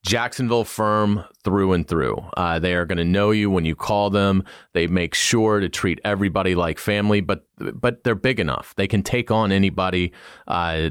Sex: male